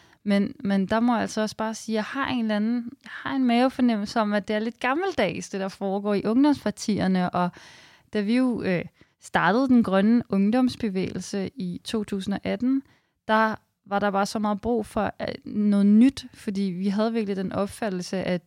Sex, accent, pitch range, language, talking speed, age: female, native, 185-225 Hz, Danish, 170 wpm, 20-39